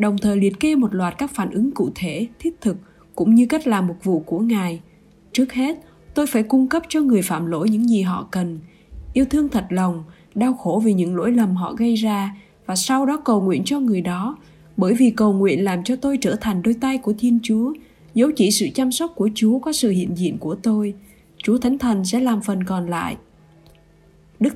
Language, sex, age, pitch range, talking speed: Vietnamese, female, 20-39, 195-250 Hz, 225 wpm